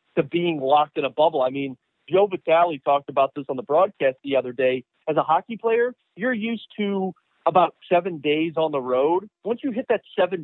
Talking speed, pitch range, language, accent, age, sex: 215 wpm, 135-175 Hz, English, American, 40-59, male